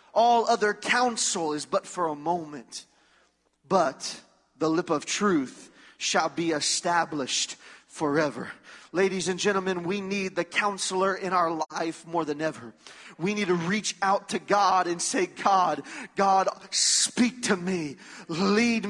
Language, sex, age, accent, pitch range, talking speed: English, male, 30-49, American, 185-235 Hz, 145 wpm